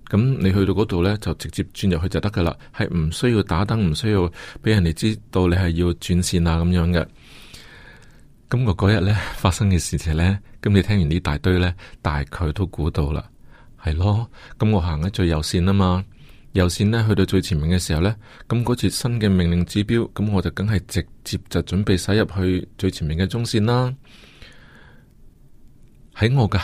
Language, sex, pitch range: Chinese, male, 90-115 Hz